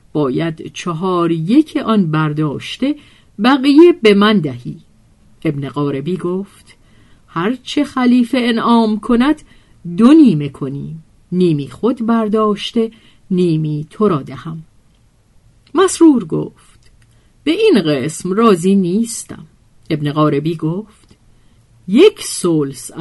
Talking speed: 95 wpm